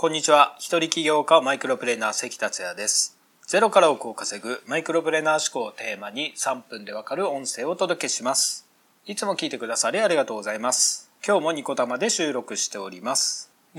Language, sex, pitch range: Japanese, male, 150-200 Hz